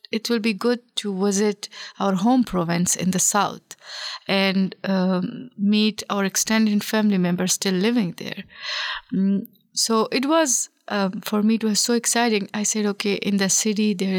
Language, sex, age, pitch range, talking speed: English, female, 30-49, 190-220 Hz, 165 wpm